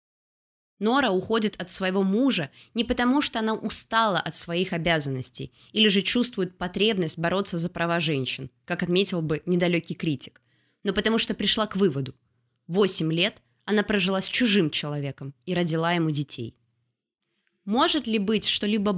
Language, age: Russian, 20-39